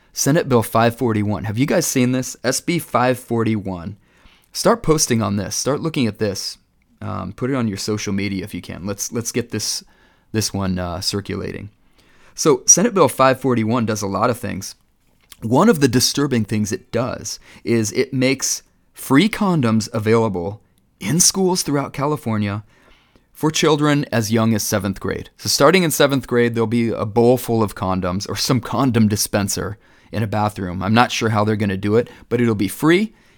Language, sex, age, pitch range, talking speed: English, male, 30-49, 100-125 Hz, 180 wpm